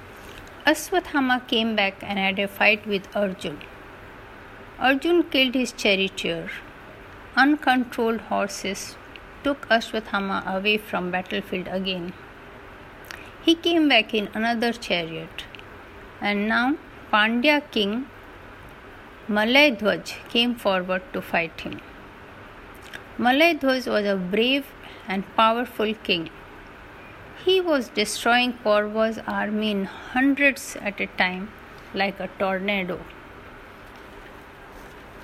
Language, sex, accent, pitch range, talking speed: Hindi, female, native, 180-235 Hz, 100 wpm